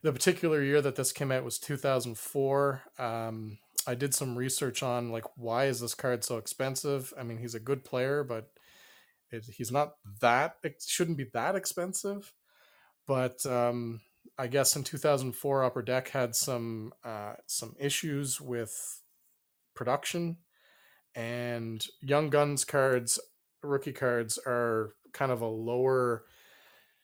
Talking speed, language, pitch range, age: 140 wpm, English, 115-140 Hz, 30-49